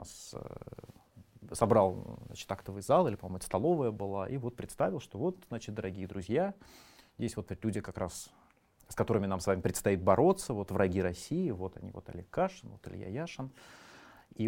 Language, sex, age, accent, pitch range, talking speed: Russian, male, 30-49, native, 95-120 Hz, 170 wpm